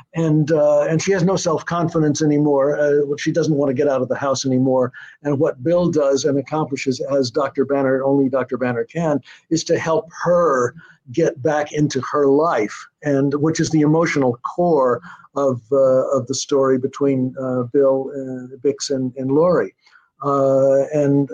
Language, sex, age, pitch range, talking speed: English, male, 50-69, 135-160 Hz, 175 wpm